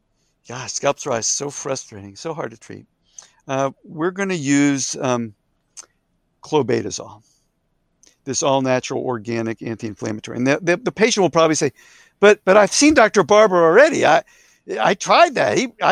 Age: 50-69